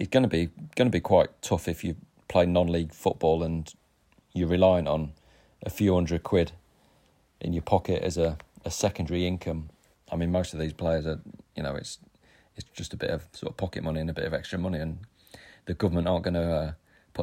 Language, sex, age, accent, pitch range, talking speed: English, male, 30-49, British, 85-100 Hz, 210 wpm